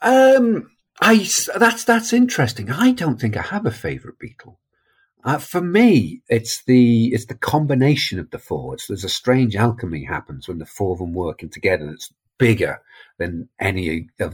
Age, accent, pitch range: 50-69, British, 95-130 Hz